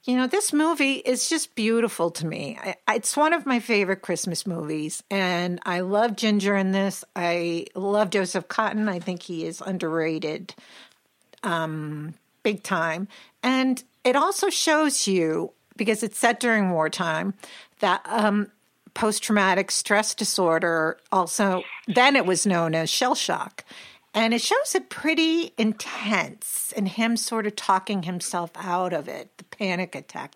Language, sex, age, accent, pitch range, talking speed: English, female, 50-69, American, 170-230 Hz, 150 wpm